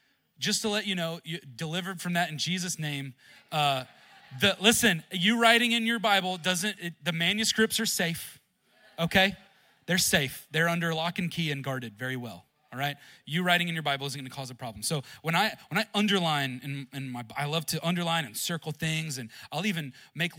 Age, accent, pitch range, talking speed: 30-49, American, 135-175 Hz, 205 wpm